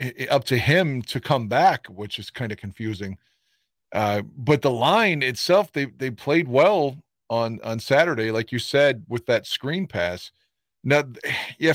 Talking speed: 165 wpm